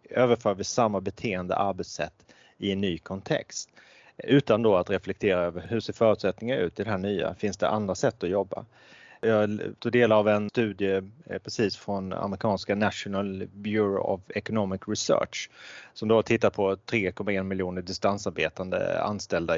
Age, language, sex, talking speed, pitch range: 30-49, Swedish, male, 155 wpm, 95-115 Hz